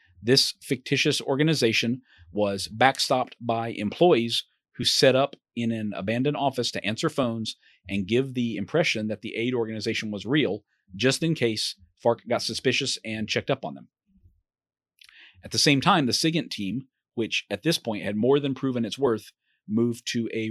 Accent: American